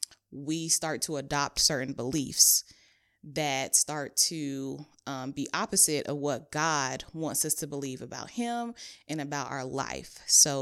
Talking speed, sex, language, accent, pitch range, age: 145 wpm, female, English, American, 140-160 Hz, 20-39